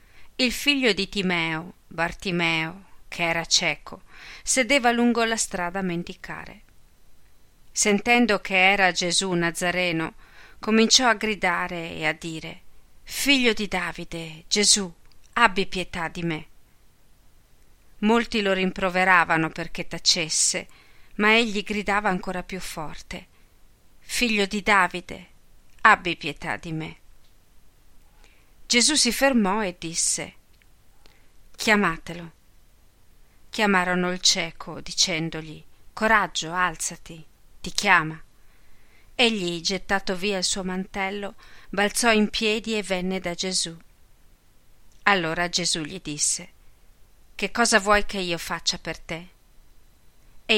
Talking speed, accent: 110 wpm, native